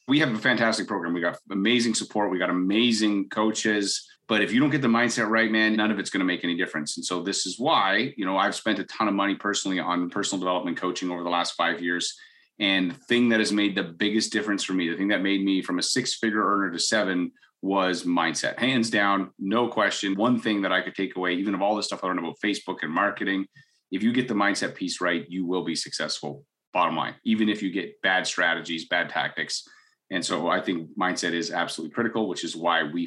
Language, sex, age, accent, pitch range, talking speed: English, male, 30-49, American, 90-110 Hz, 240 wpm